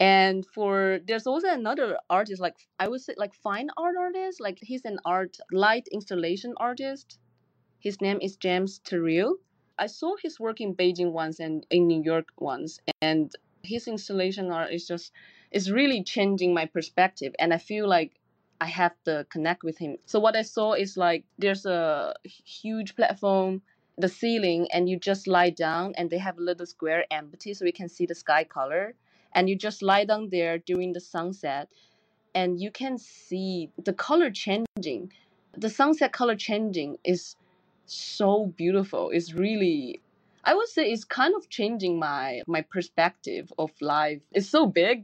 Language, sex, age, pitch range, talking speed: English, female, 20-39, 175-225 Hz, 175 wpm